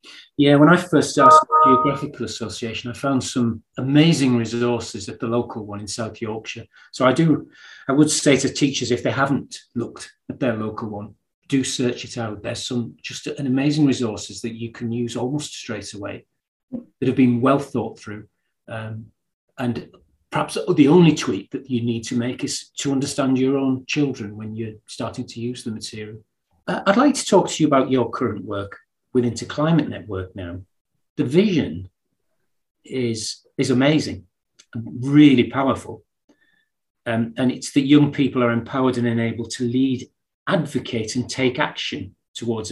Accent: British